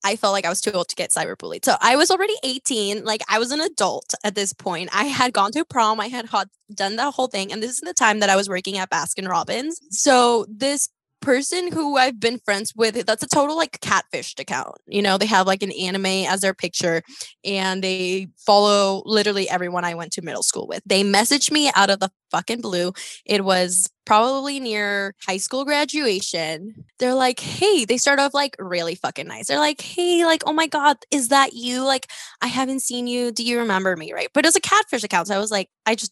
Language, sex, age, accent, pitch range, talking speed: English, female, 10-29, American, 195-275 Hz, 230 wpm